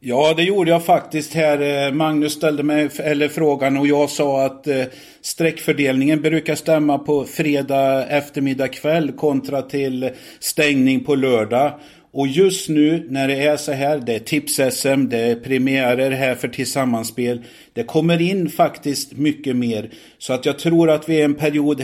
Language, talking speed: Swedish, 160 wpm